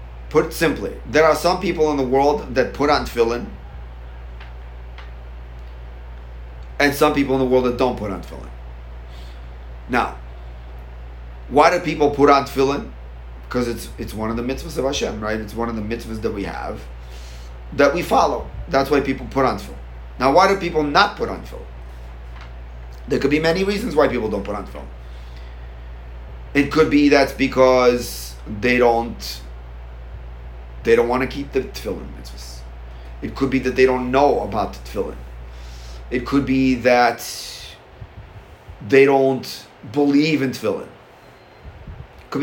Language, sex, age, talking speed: English, male, 30-49, 160 wpm